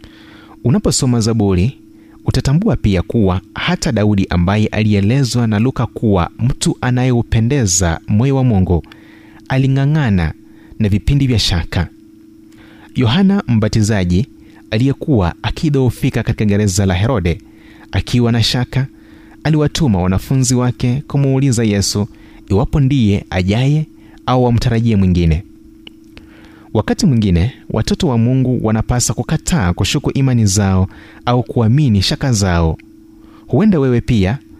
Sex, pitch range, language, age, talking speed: male, 100-140 Hz, Swahili, 30-49, 105 wpm